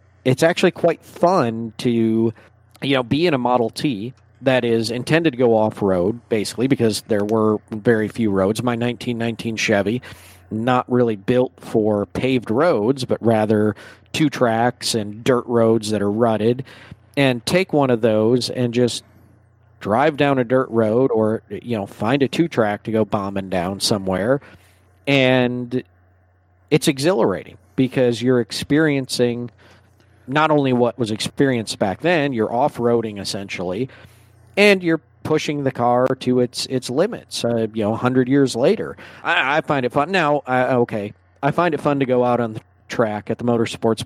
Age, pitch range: 40-59, 110-130 Hz